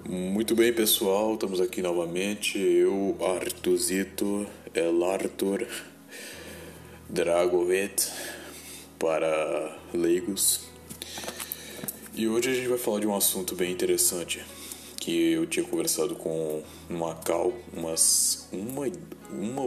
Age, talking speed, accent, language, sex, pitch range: 20-39, 100 wpm, Brazilian, Portuguese, male, 85-125 Hz